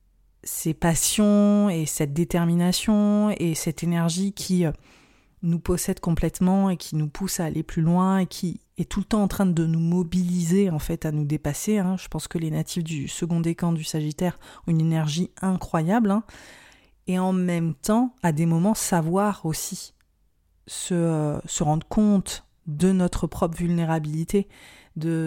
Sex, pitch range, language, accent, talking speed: female, 160-185 Hz, French, French, 170 wpm